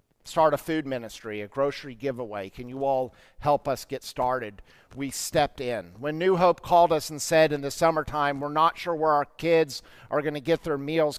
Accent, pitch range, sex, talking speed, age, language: American, 130-160 Hz, male, 210 wpm, 50-69, English